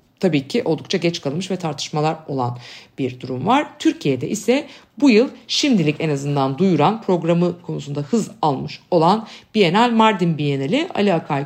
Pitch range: 145-205 Hz